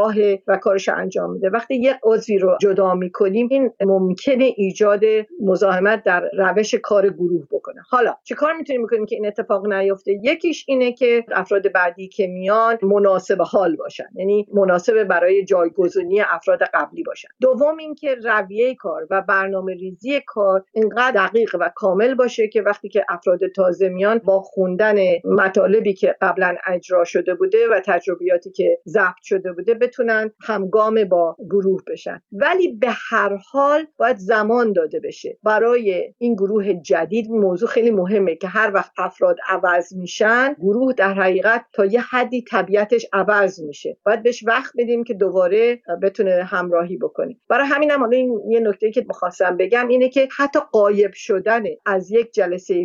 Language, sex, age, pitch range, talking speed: Persian, female, 50-69, 190-245 Hz, 160 wpm